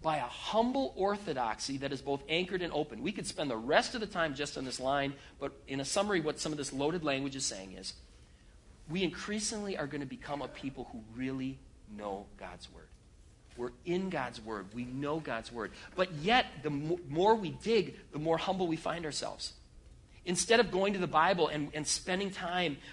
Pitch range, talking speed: 145-190 Hz, 205 wpm